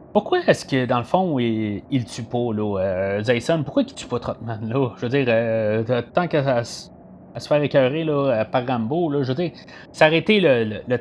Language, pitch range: French, 110-145 Hz